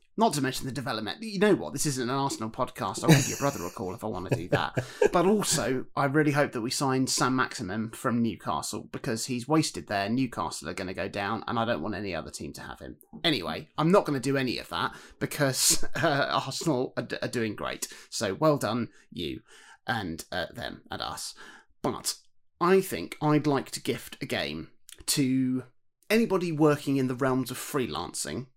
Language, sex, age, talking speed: English, male, 30-49, 210 wpm